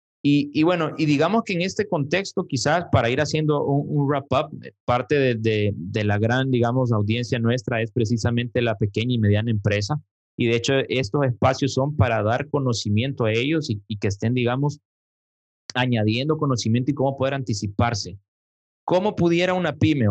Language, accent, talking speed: Spanish, Mexican, 175 wpm